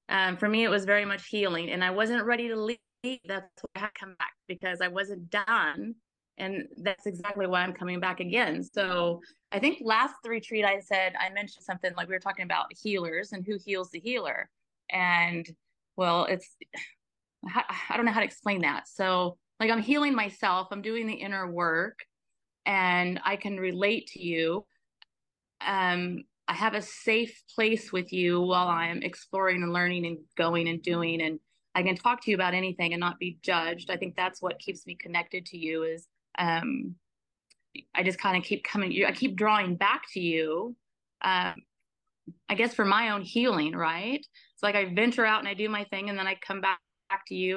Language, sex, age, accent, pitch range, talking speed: English, female, 20-39, American, 180-210 Hz, 200 wpm